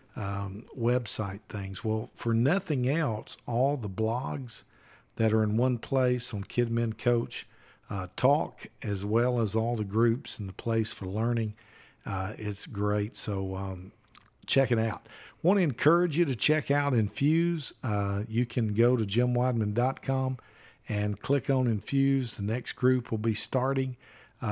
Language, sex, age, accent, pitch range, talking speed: English, male, 50-69, American, 110-130 Hz, 155 wpm